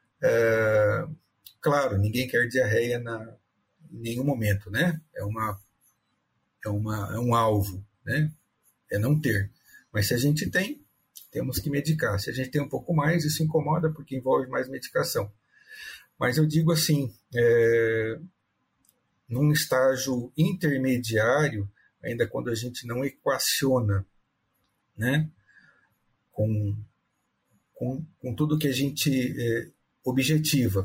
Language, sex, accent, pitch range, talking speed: Portuguese, male, Brazilian, 115-150 Hz, 130 wpm